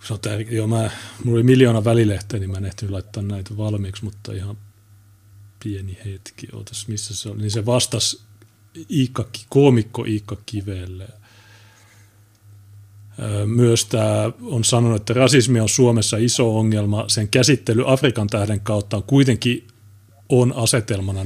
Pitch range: 100-115 Hz